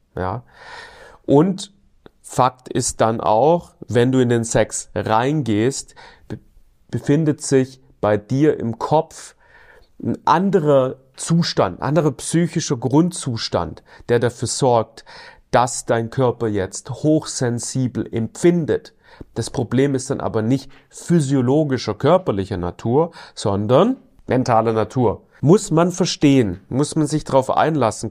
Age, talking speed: 40-59, 115 wpm